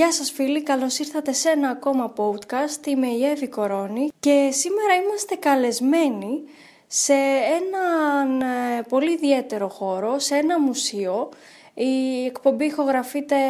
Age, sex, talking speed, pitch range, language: 20-39, female, 120 wpm, 245-305 Hz, Greek